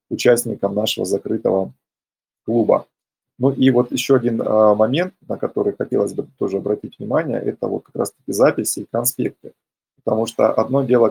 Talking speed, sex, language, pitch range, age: 150 wpm, male, Russian, 110-130 Hz, 20-39